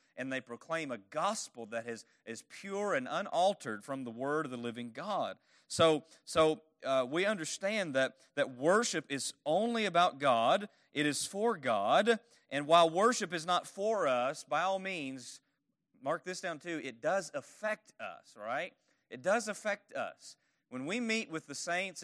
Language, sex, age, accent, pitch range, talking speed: English, male, 40-59, American, 130-185 Hz, 170 wpm